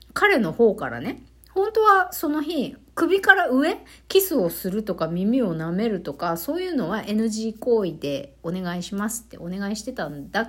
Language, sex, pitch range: Japanese, female, 165-280 Hz